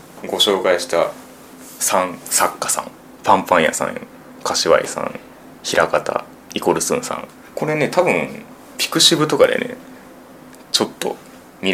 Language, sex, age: Japanese, male, 20-39